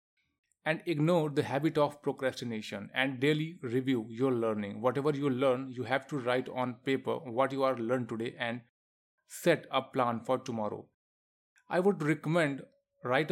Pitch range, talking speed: 120-150 Hz, 160 wpm